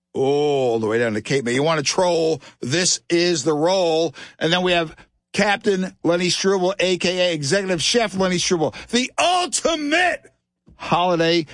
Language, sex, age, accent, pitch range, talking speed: English, male, 60-79, American, 120-180 Hz, 160 wpm